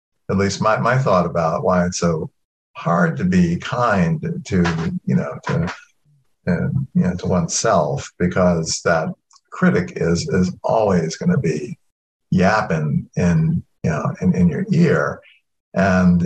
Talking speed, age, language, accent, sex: 150 wpm, 50-69, English, American, male